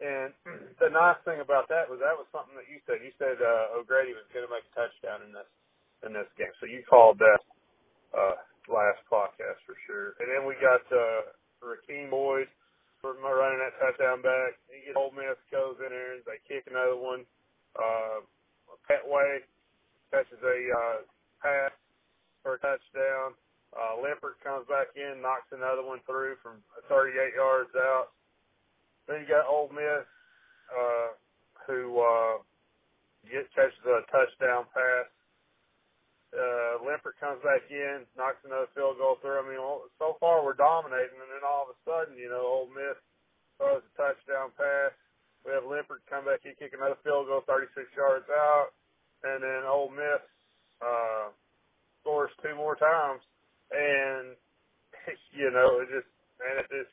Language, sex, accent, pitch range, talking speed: English, male, American, 130-155 Hz, 165 wpm